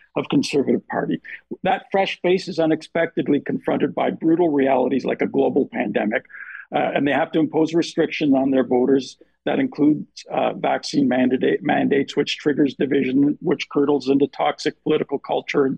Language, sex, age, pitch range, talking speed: English, male, 50-69, 135-195 Hz, 160 wpm